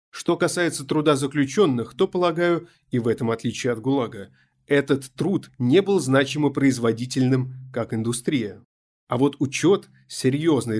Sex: male